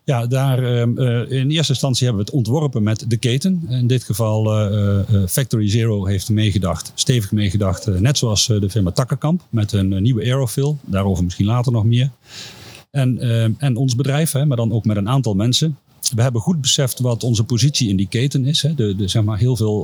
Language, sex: Dutch, male